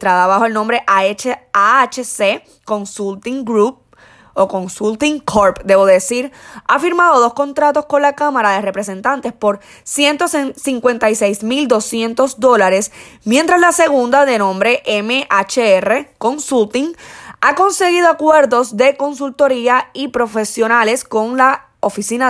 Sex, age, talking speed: female, 20-39, 110 wpm